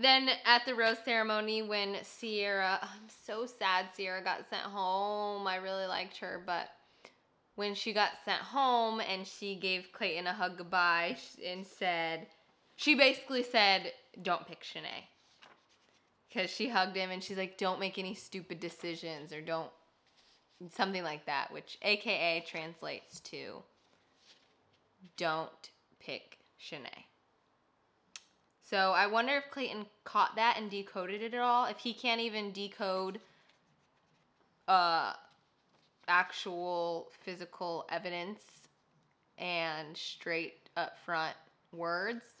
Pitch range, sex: 180-240 Hz, female